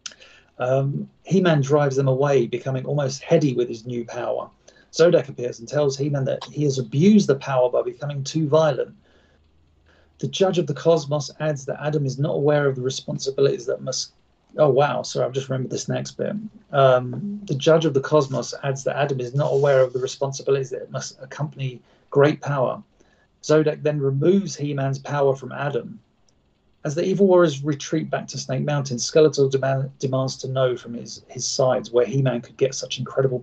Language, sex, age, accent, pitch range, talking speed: English, male, 40-59, British, 125-155 Hz, 185 wpm